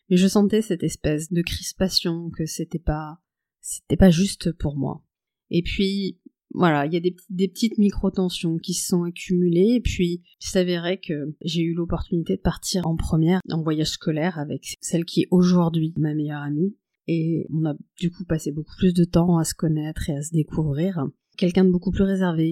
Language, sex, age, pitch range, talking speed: French, female, 30-49, 160-180 Hz, 195 wpm